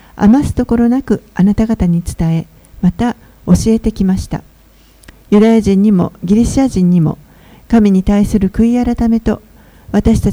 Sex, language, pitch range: female, Japanese, 185-235 Hz